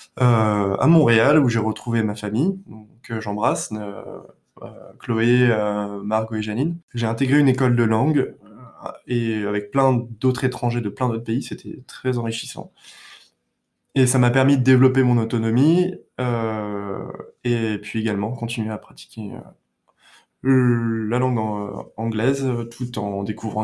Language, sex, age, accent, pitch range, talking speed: French, male, 20-39, French, 110-130 Hz, 145 wpm